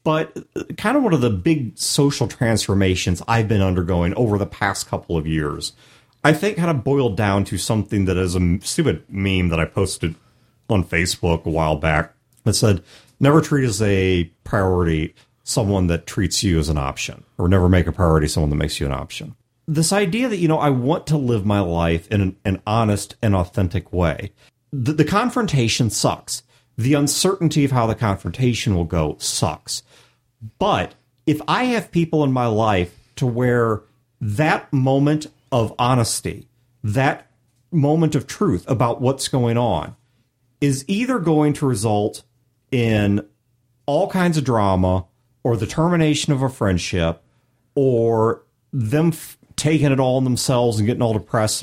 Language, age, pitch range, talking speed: English, 40-59, 95-140 Hz, 165 wpm